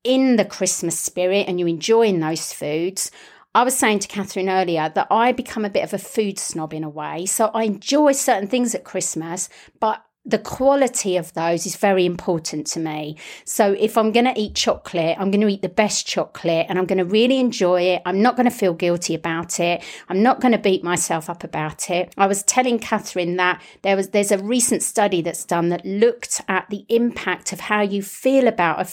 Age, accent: 40-59, British